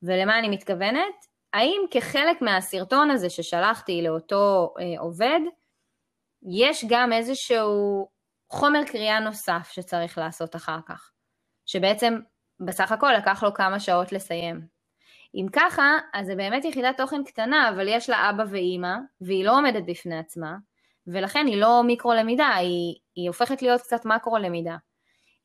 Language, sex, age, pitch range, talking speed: Hebrew, female, 20-39, 180-245 Hz, 130 wpm